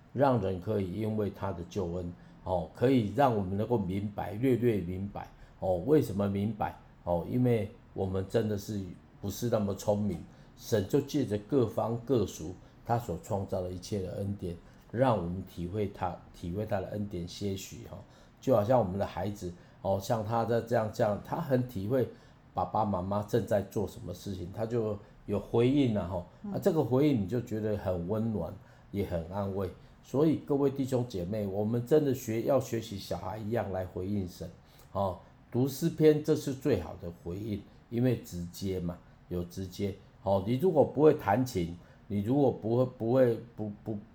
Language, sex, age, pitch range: Chinese, male, 50-69, 95-120 Hz